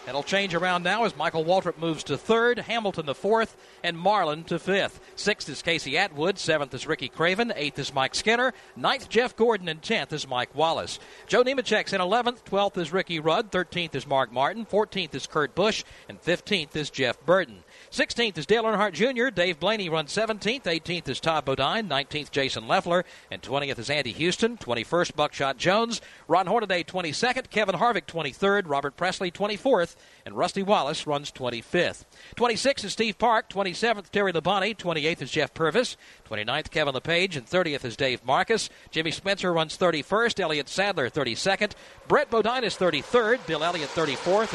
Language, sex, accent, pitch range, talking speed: English, male, American, 150-215 Hz, 175 wpm